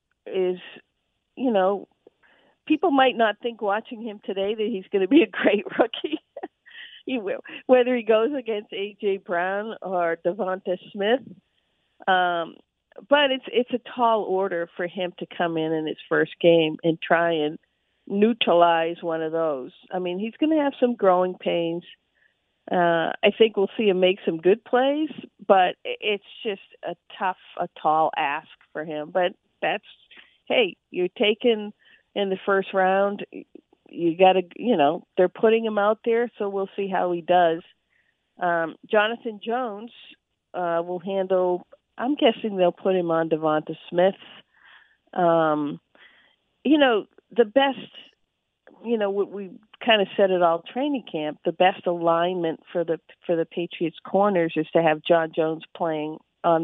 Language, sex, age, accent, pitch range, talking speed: English, female, 50-69, American, 170-225 Hz, 160 wpm